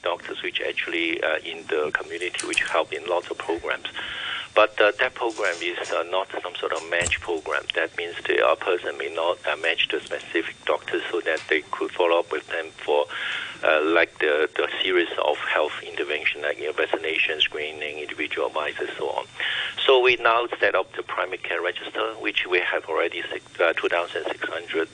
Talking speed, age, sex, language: 190 wpm, 60-79, male, English